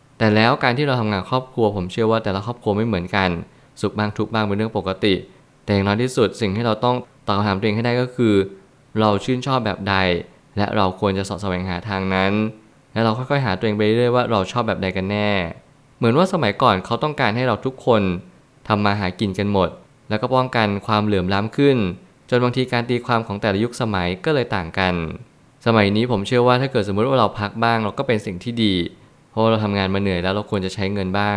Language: Thai